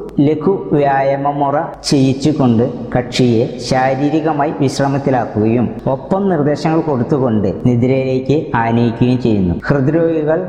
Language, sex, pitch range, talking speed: Malayalam, female, 125-150 Hz, 75 wpm